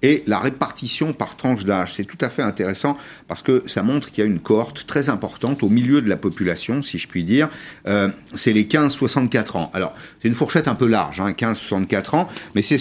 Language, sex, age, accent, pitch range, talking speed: French, male, 50-69, French, 100-150 Hz, 225 wpm